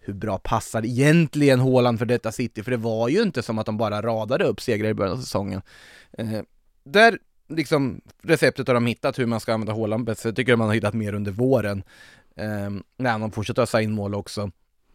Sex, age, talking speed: male, 20-39, 215 wpm